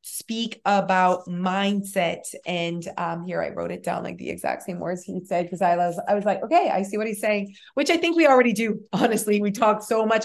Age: 30-49